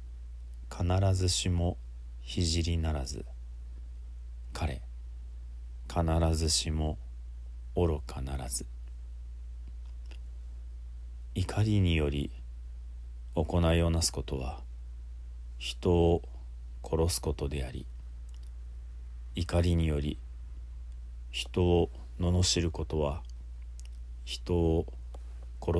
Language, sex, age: Japanese, male, 40-59